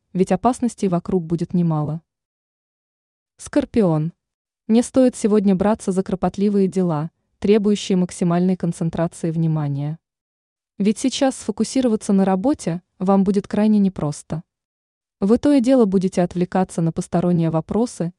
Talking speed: 115 wpm